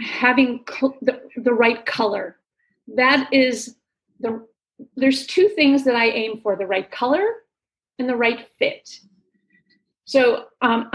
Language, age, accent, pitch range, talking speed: English, 40-59, American, 220-270 Hz, 135 wpm